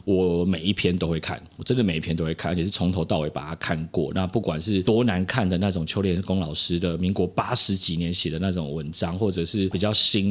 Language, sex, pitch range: Chinese, male, 85-110 Hz